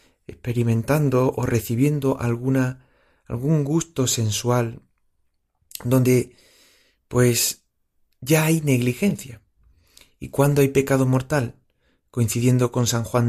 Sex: male